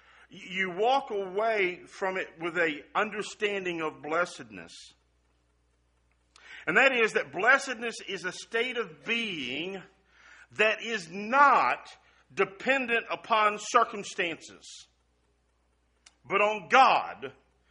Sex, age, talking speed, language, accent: male, 50-69, 100 wpm, English, American